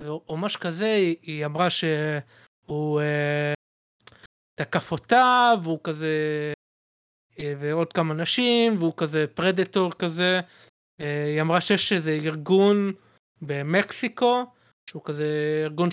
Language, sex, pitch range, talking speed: Hebrew, male, 155-195 Hz, 100 wpm